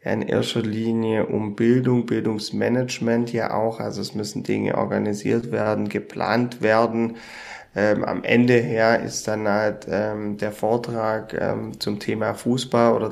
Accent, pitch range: German, 110-120 Hz